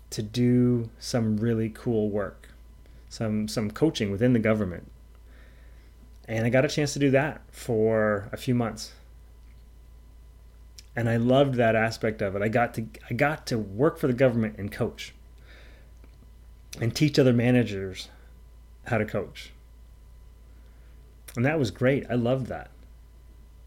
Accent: American